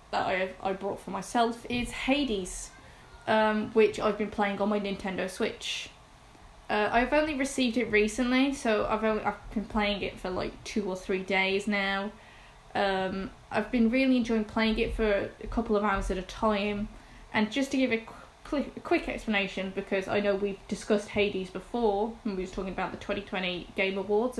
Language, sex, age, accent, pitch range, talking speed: English, female, 10-29, British, 200-230 Hz, 190 wpm